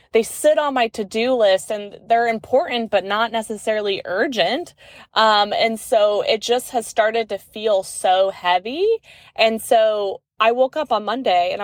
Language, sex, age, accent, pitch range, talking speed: English, female, 20-39, American, 190-245 Hz, 165 wpm